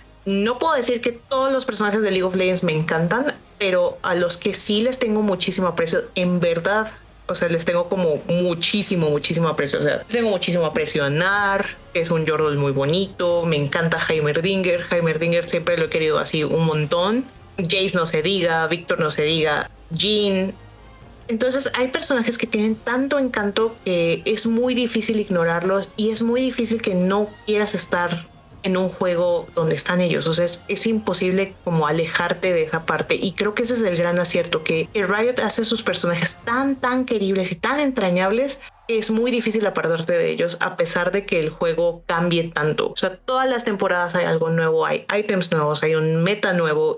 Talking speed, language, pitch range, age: 190 wpm, Spanish, 170-220 Hz, 30-49